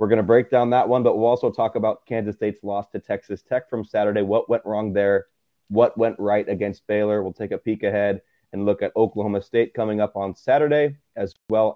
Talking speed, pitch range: 230 wpm, 105-125 Hz